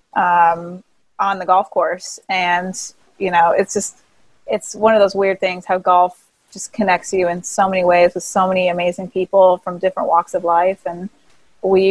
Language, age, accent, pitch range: English, 30-49, American, 180-205 Hz